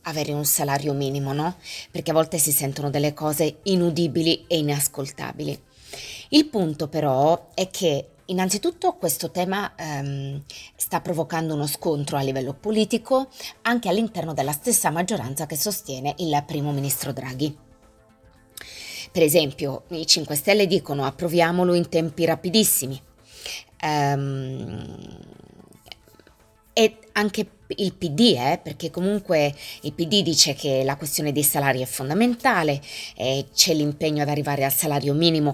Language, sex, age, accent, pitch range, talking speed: Italian, female, 20-39, native, 135-175 Hz, 130 wpm